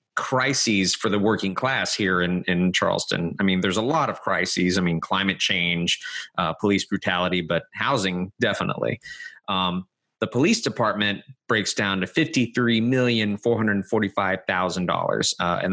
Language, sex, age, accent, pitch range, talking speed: English, male, 30-49, American, 95-110 Hz, 135 wpm